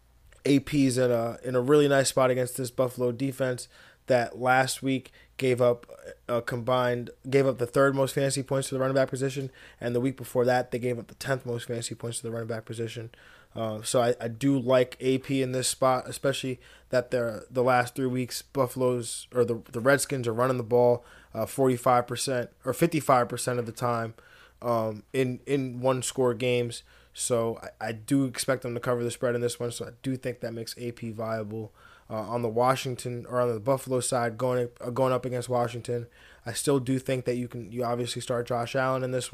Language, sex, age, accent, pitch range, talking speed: English, male, 20-39, American, 120-130 Hz, 215 wpm